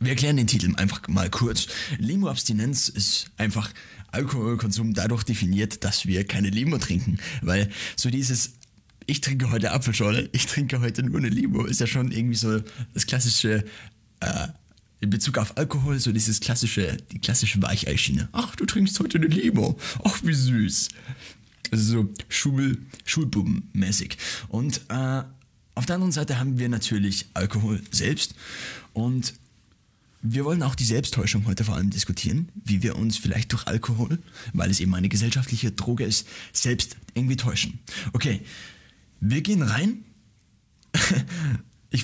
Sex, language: male, German